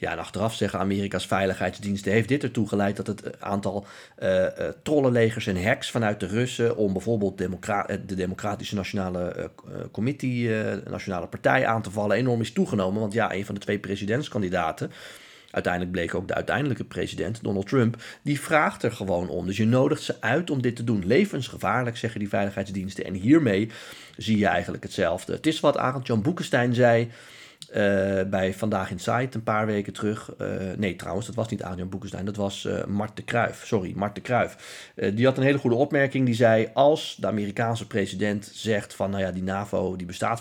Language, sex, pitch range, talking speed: Dutch, male, 95-115 Hz, 195 wpm